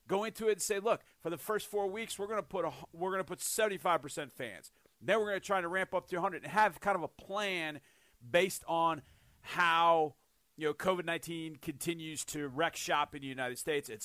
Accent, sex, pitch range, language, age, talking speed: American, male, 150-190 Hz, English, 40-59, 240 wpm